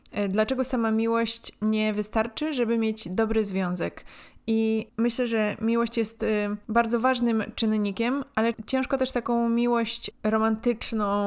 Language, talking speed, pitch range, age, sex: Polish, 125 wpm, 200-235 Hz, 20-39, female